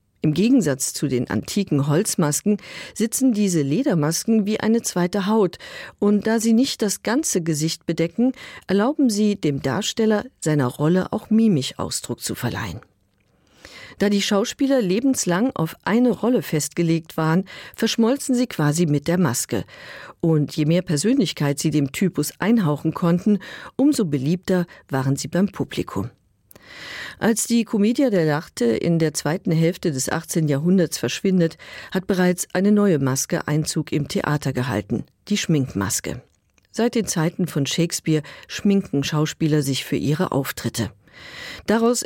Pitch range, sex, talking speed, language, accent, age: 150-210 Hz, female, 135 wpm, German, German, 50-69